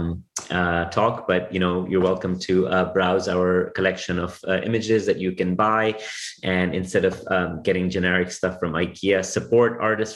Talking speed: 175 wpm